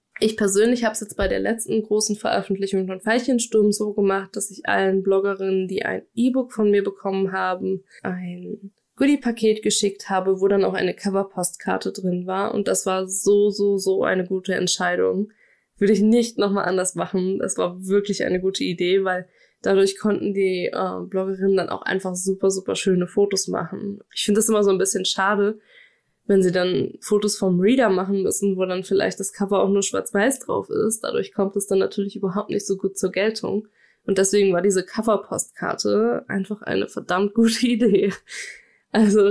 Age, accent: 20-39, German